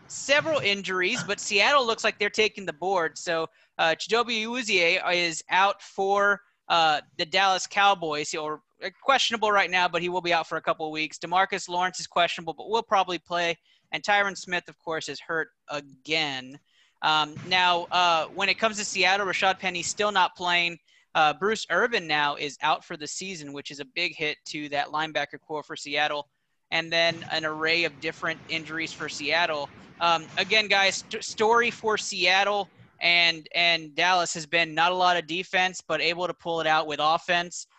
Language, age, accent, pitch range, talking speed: English, 30-49, American, 160-190 Hz, 185 wpm